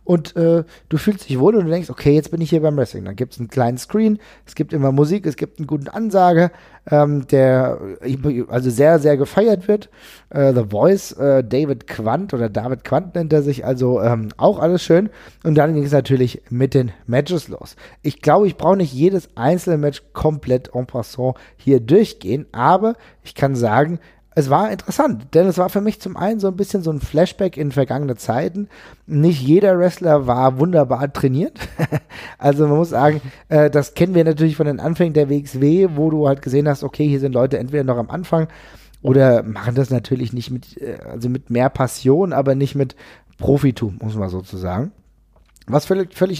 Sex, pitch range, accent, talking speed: male, 130-170 Hz, German, 195 wpm